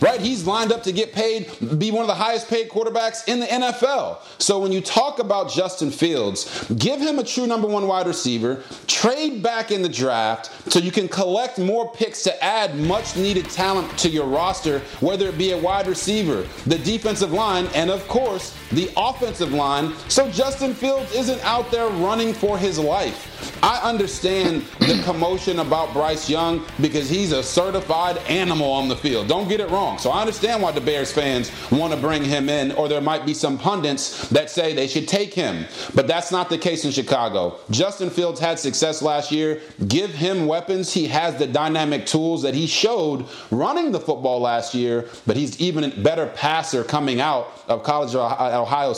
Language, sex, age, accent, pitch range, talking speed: English, male, 30-49, American, 150-210 Hz, 195 wpm